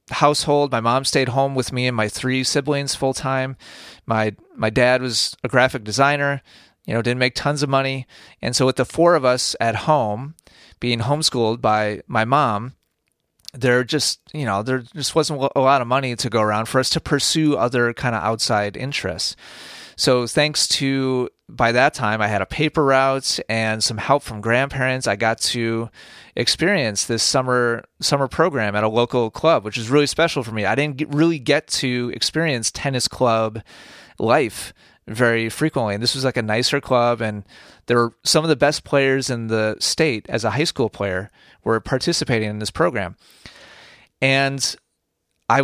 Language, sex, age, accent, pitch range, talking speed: English, male, 30-49, American, 110-140 Hz, 185 wpm